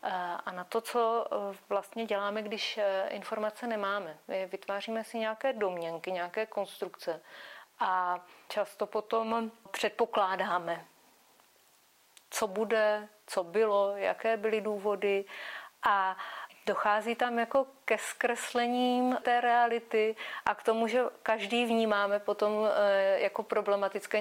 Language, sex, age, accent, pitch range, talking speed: Czech, female, 30-49, native, 195-230 Hz, 110 wpm